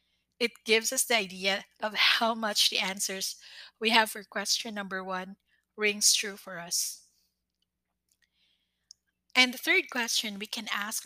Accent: Filipino